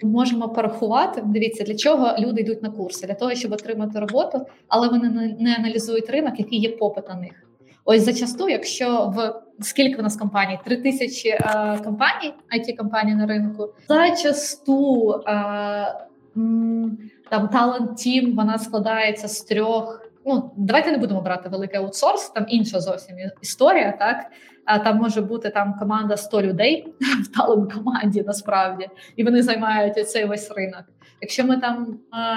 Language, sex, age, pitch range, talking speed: Ukrainian, female, 20-39, 205-240 Hz, 150 wpm